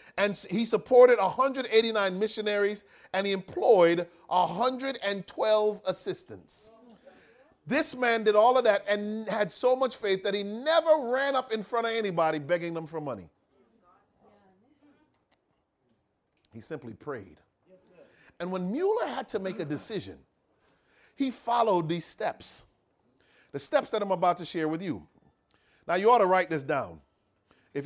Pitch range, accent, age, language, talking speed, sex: 160-215 Hz, American, 40-59, English, 140 wpm, male